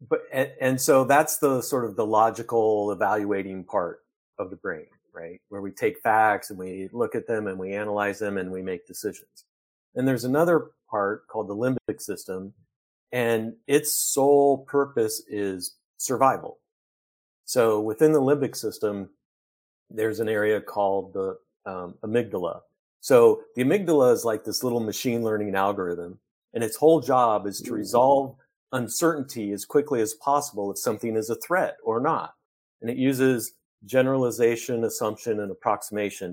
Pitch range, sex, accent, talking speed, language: 105-140 Hz, male, American, 155 wpm, English